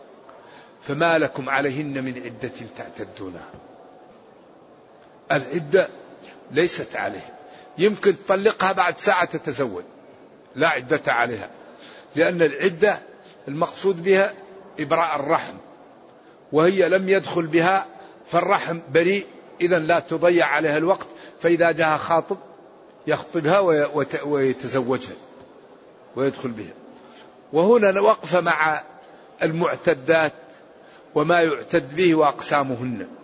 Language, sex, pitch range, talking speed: Arabic, male, 150-190 Hz, 90 wpm